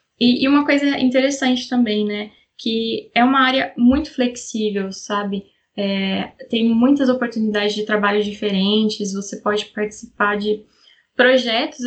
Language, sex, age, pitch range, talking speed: Portuguese, female, 10-29, 215-255 Hz, 120 wpm